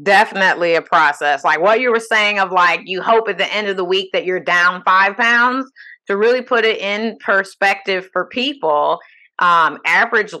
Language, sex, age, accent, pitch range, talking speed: English, female, 30-49, American, 175-220 Hz, 190 wpm